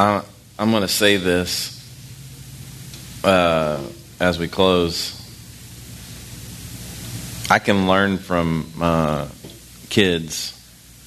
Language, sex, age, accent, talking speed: English, male, 30-49, American, 80 wpm